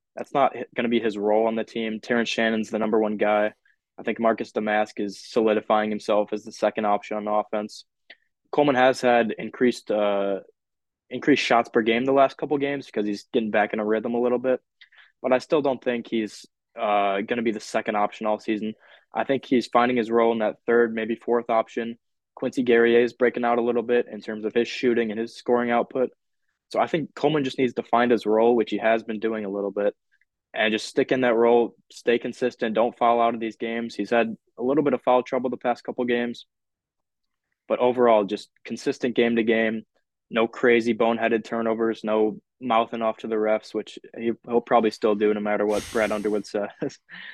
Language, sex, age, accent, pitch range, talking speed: English, male, 20-39, American, 110-120 Hz, 215 wpm